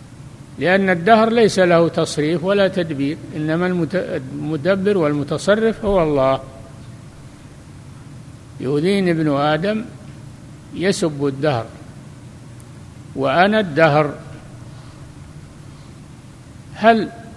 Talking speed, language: 70 wpm, Arabic